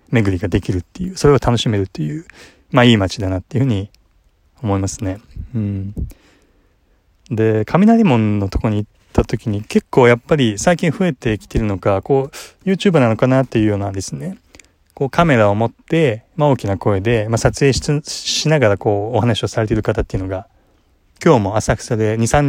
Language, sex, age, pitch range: Japanese, male, 20-39, 100-140 Hz